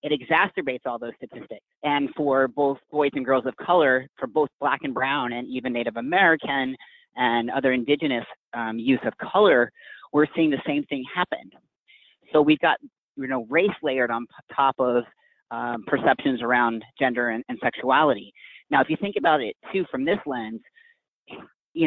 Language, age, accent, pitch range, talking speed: English, 40-59, American, 120-155 Hz, 175 wpm